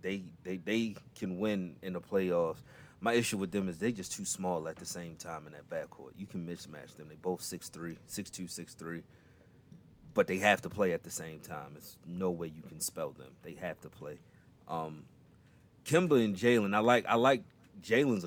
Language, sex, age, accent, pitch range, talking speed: English, male, 30-49, American, 85-95 Hz, 205 wpm